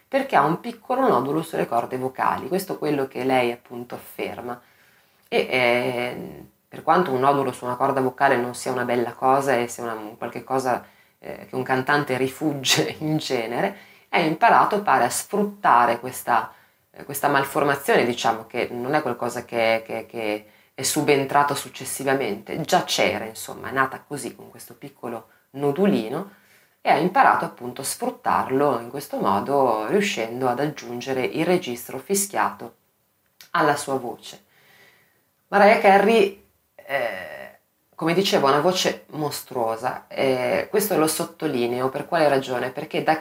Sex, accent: female, native